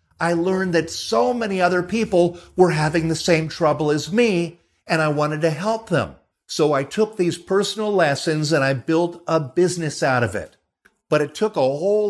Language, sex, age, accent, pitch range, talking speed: English, male, 50-69, American, 150-190 Hz, 195 wpm